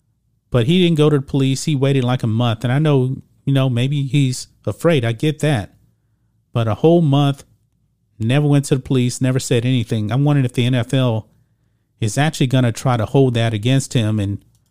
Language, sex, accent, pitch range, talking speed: English, male, American, 115-140 Hz, 210 wpm